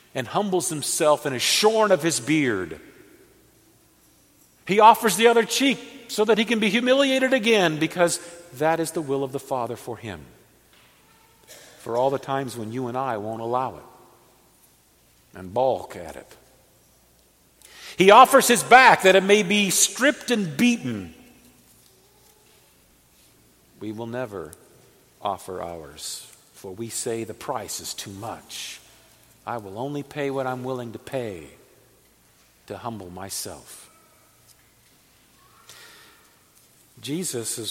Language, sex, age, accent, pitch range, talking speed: English, male, 50-69, American, 110-160 Hz, 130 wpm